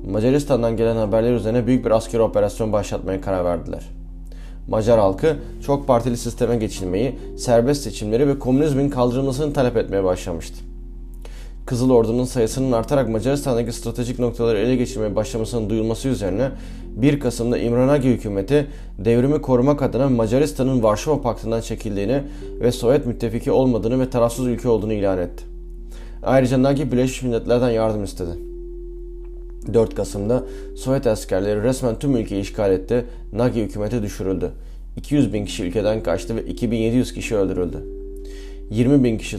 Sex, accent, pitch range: male, native, 100-125 Hz